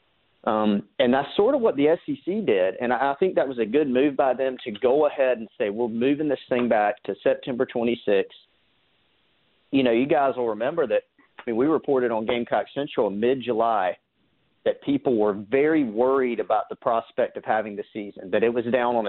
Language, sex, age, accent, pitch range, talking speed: English, male, 40-59, American, 120-150 Hz, 210 wpm